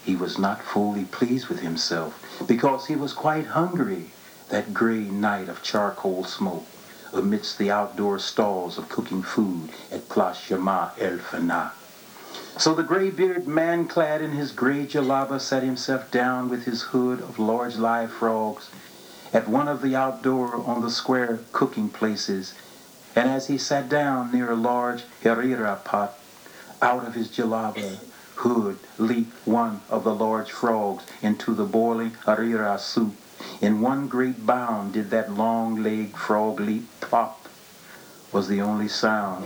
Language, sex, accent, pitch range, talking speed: English, male, American, 105-125 Hz, 150 wpm